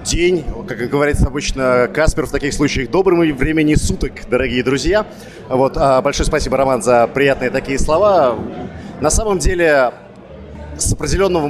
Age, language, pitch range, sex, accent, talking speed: 30-49, Russian, 130-165 Hz, male, native, 140 wpm